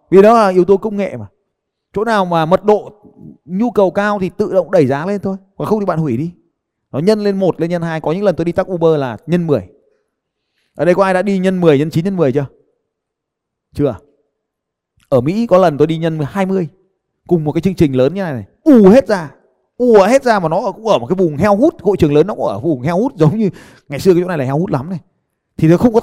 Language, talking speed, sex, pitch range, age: Vietnamese, 270 wpm, male, 160-210 Hz, 20-39